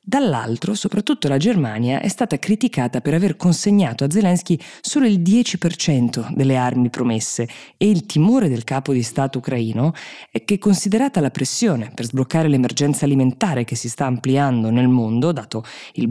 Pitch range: 125-175 Hz